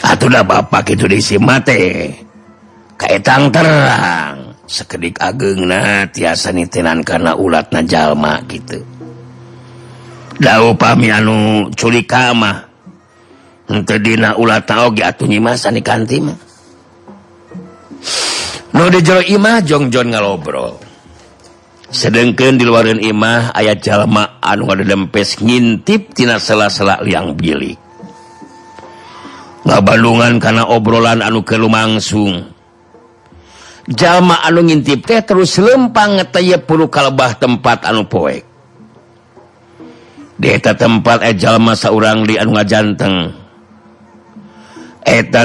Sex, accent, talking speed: male, native, 95 wpm